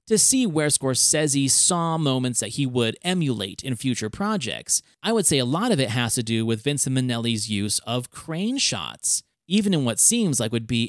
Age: 30-49